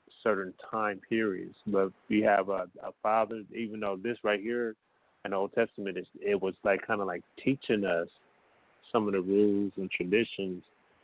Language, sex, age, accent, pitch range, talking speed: English, male, 30-49, American, 95-105 Hz, 175 wpm